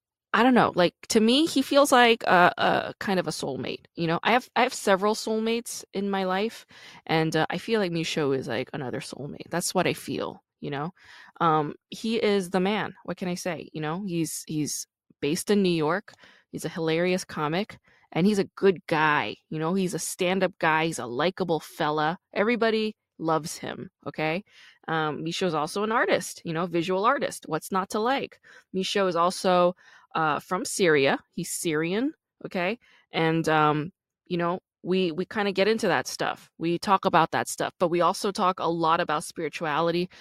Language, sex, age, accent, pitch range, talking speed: English, female, 20-39, American, 155-195 Hz, 195 wpm